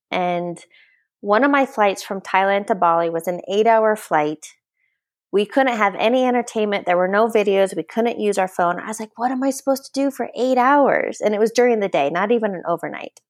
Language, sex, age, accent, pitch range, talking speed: English, female, 20-39, American, 185-235 Hz, 225 wpm